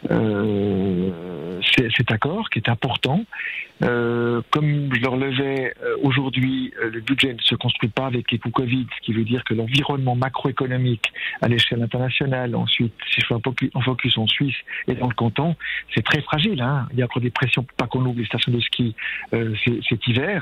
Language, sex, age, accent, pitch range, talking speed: French, male, 50-69, French, 120-145 Hz, 195 wpm